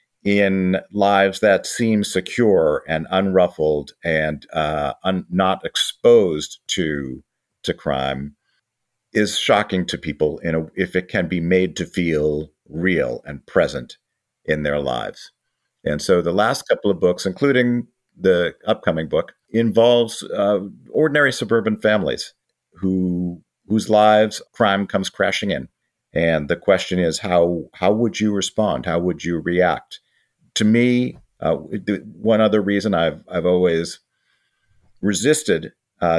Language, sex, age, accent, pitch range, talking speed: English, male, 50-69, American, 85-110 Hz, 135 wpm